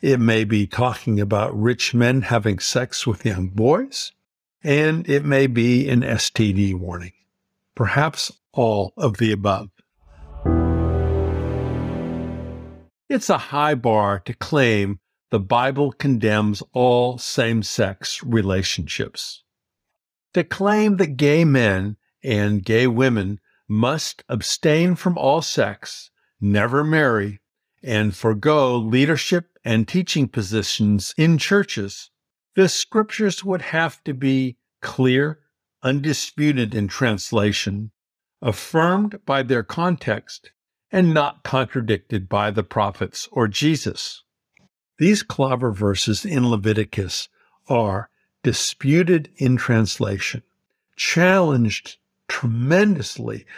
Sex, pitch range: male, 105-145 Hz